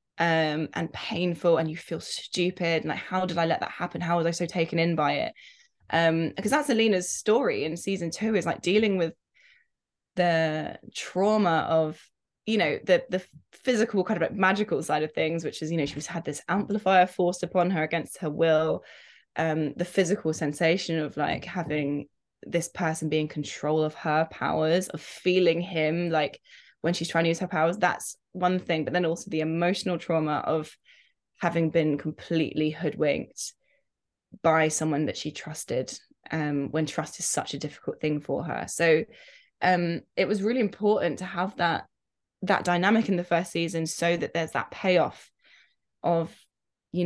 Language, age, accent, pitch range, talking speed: English, 20-39, British, 155-180 Hz, 180 wpm